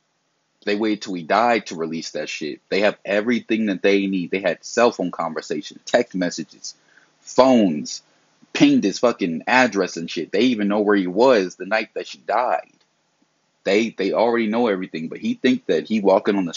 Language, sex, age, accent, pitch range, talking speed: English, male, 30-49, American, 100-120 Hz, 190 wpm